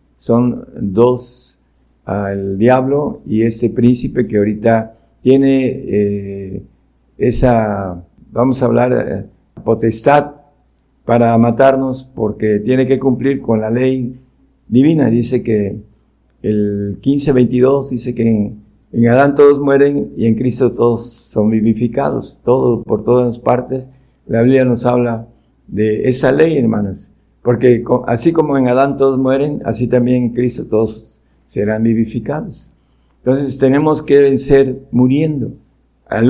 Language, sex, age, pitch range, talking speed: Spanish, male, 50-69, 110-135 Hz, 125 wpm